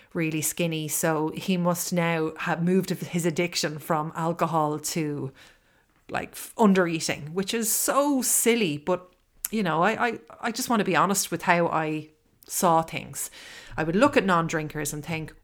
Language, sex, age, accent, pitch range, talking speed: English, female, 30-49, Irish, 155-195 Hz, 165 wpm